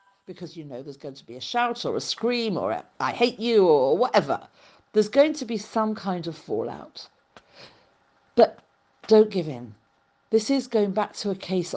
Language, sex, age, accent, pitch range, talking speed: English, female, 50-69, British, 160-220 Hz, 195 wpm